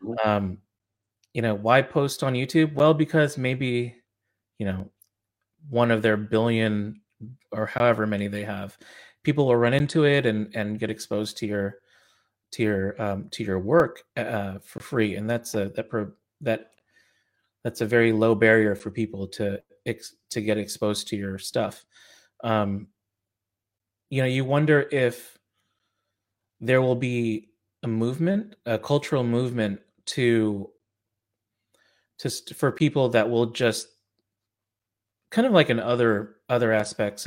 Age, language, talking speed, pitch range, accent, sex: 30-49, English, 145 wpm, 105-120 Hz, American, male